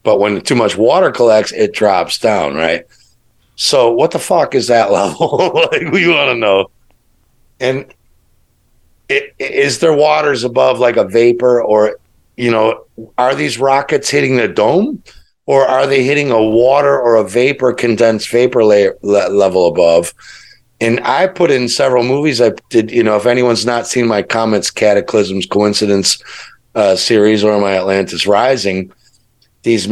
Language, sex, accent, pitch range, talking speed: English, male, American, 100-125 Hz, 160 wpm